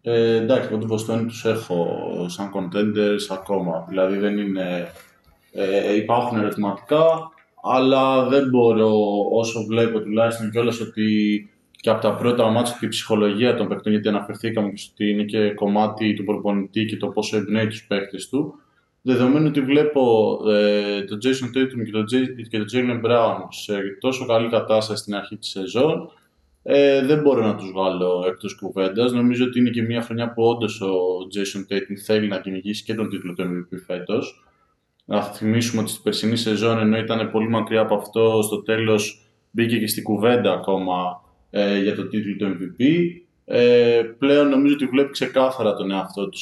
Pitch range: 100-115 Hz